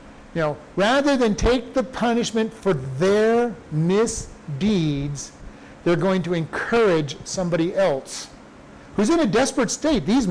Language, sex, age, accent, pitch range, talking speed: English, male, 50-69, American, 165-210 Hz, 130 wpm